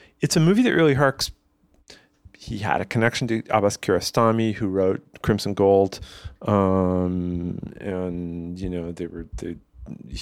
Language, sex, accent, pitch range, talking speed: English, male, American, 85-100 Hz, 140 wpm